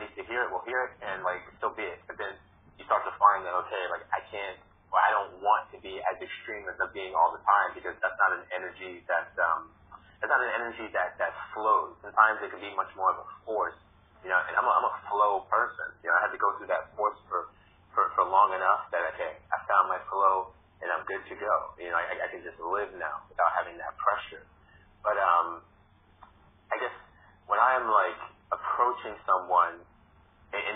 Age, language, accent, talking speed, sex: 30-49, English, American, 225 wpm, male